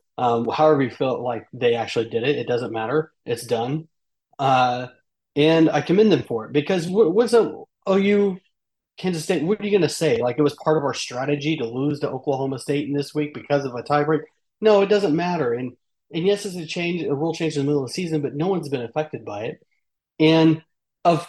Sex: male